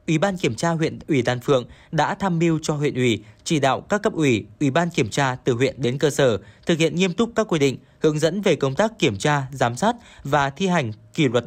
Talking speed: 255 wpm